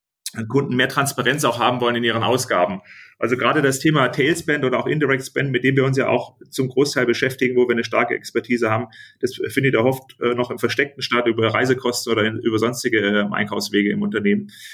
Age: 30-49